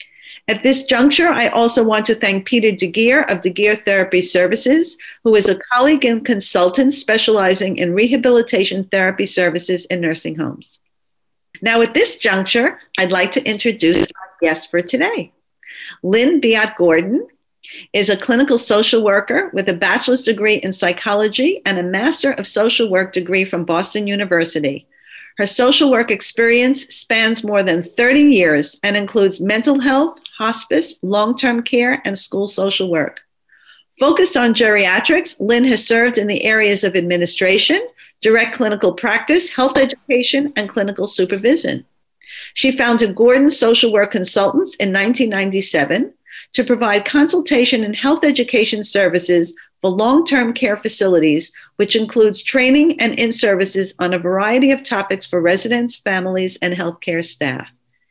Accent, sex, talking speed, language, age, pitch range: American, female, 140 wpm, English, 50-69, 190-250 Hz